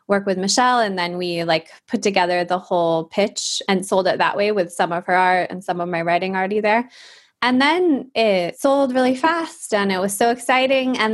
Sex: female